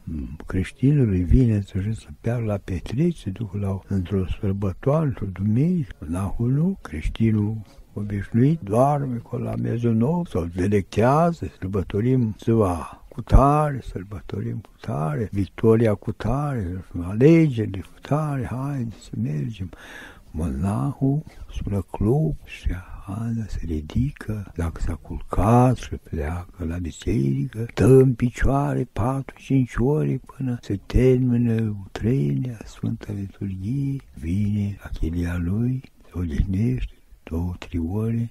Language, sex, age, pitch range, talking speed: Romanian, male, 60-79, 85-120 Hz, 105 wpm